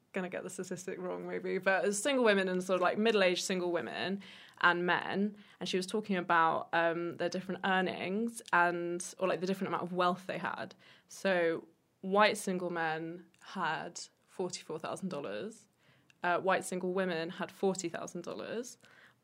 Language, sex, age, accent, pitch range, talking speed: English, female, 20-39, British, 175-195 Hz, 160 wpm